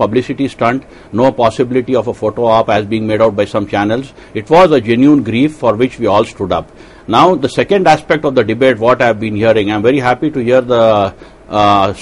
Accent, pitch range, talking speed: Indian, 110-135 Hz, 220 wpm